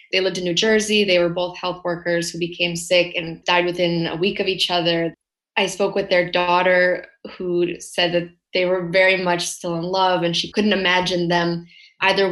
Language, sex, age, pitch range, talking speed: English, female, 20-39, 170-190 Hz, 205 wpm